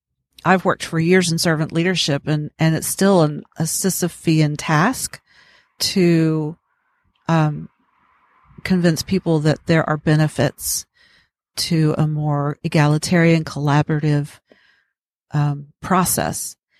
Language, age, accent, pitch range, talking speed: English, 40-59, American, 150-180 Hz, 105 wpm